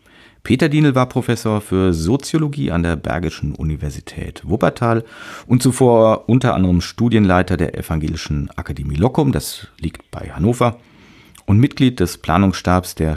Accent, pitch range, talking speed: German, 85-115 Hz, 130 wpm